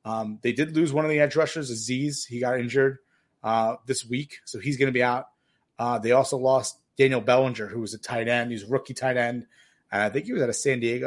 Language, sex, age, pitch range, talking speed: English, male, 30-49, 120-140 Hz, 255 wpm